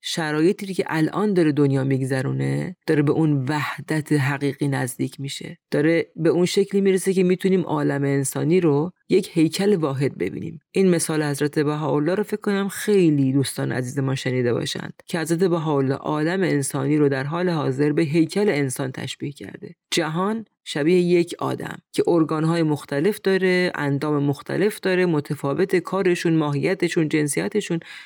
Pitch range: 145-180 Hz